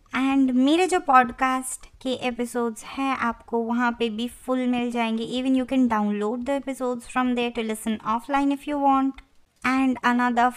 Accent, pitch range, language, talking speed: native, 230-265 Hz, Hindi, 170 wpm